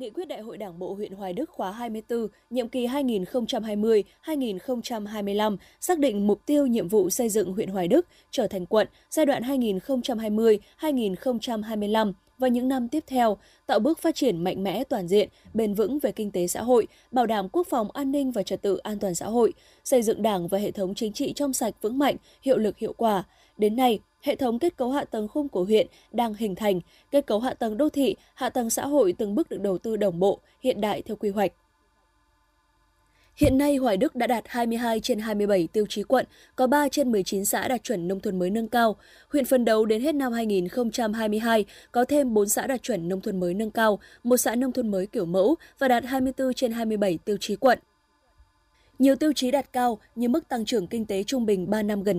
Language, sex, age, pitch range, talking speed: Vietnamese, female, 20-39, 205-260 Hz, 215 wpm